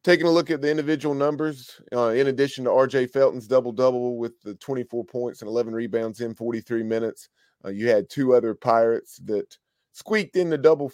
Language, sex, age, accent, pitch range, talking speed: English, male, 30-49, American, 105-125 Hz, 190 wpm